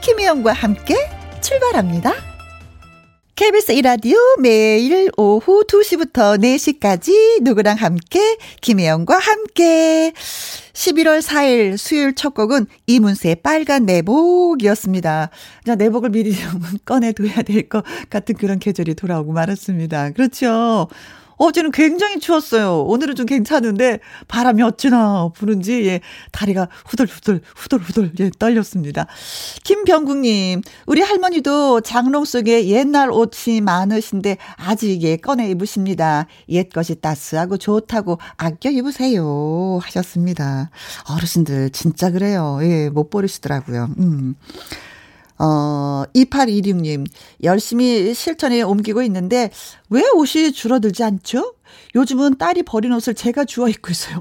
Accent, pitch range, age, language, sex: native, 175-265 Hz, 40-59, Korean, female